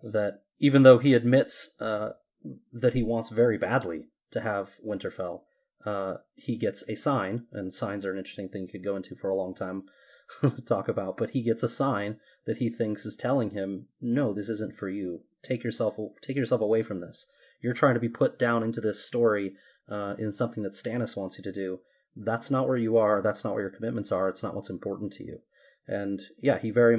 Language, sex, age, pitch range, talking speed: English, male, 30-49, 100-120 Hz, 215 wpm